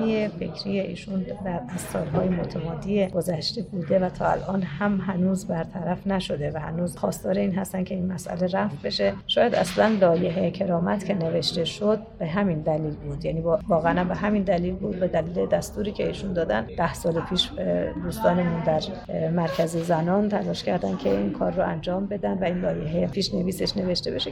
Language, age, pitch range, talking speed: Persian, 30-49, 165-205 Hz, 175 wpm